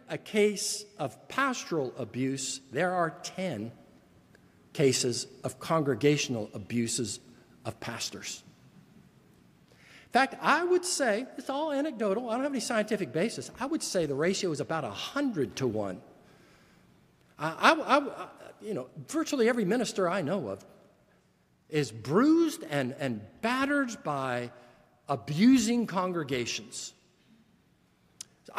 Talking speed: 120 wpm